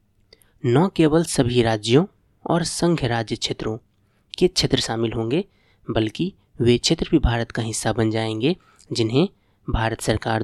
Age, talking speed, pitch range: 20-39, 140 wpm, 115-150 Hz